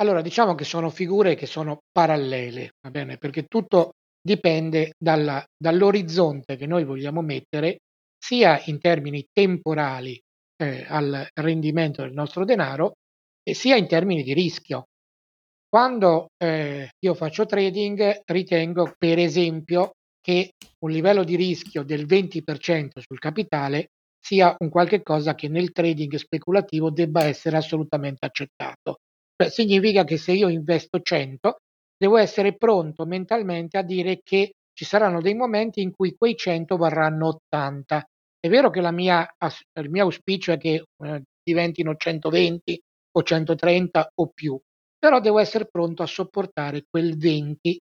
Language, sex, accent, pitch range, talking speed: Italian, male, native, 155-190 Hz, 140 wpm